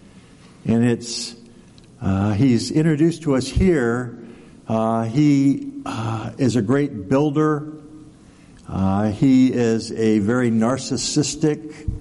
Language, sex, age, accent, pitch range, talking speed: English, male, 60-79, American, 115-160 Hz, 105 wpm